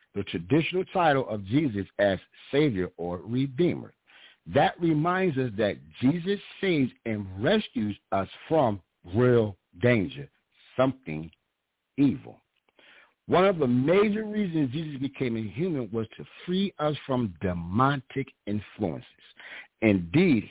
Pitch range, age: 100-155 Hz, 60-79